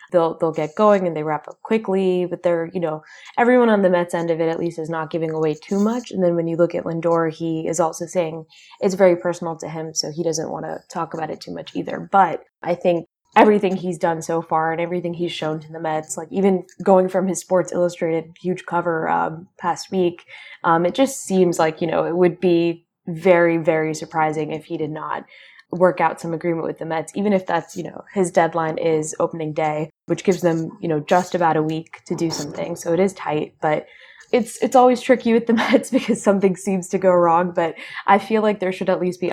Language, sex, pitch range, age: English, female, 160-185 Hz, 20-39